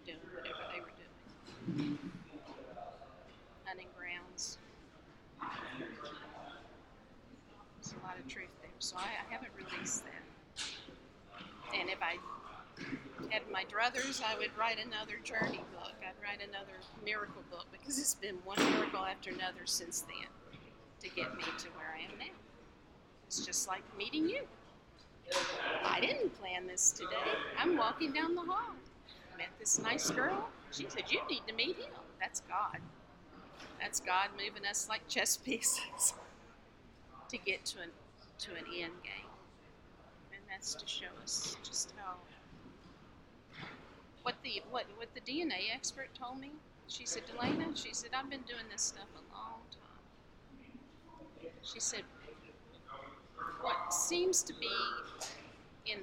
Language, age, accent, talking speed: English, 50-69, American, 140 wpm